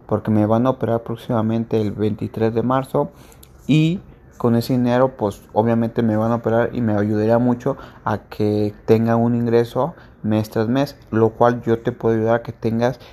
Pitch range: 110-125 Hz